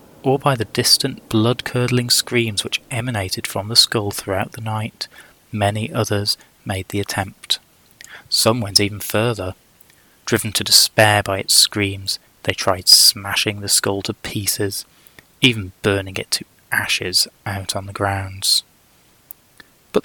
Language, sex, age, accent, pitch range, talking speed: English, male, 20-39, British, 100-120 Hz, 140 wpm